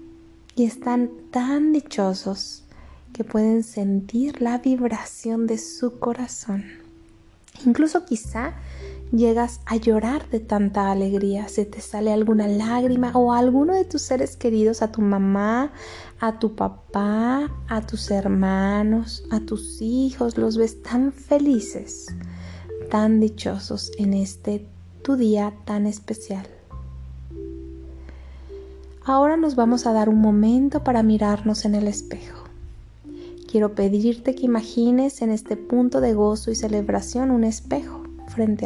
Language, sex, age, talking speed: Spanish, female, 30-49, 125 wpm